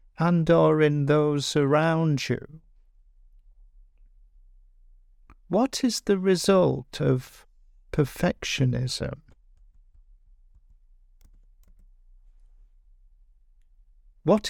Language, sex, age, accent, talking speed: English, male, 50-69, British, 55 wpm